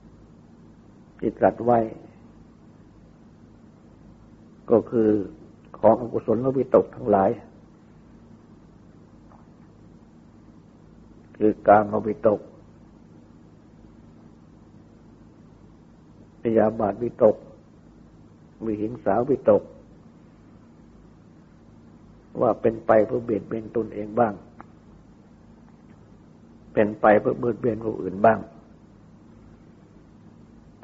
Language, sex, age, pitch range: Thai, male, 60-79, 80-110 Hz